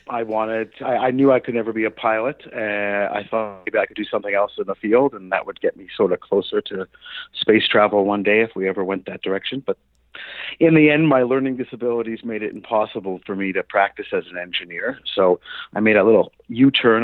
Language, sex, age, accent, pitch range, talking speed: English, male, 40-59, American, 100-130 Hz, 225 wpm